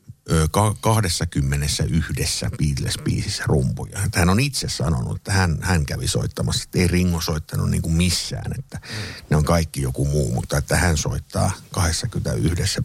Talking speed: 145 wpm